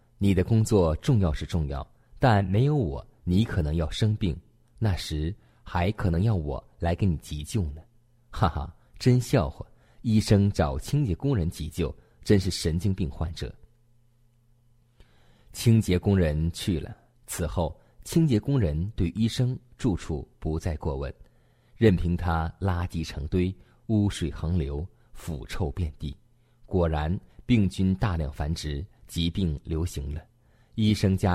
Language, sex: Chinese, male